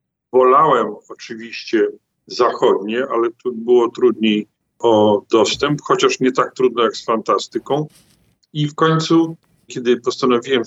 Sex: male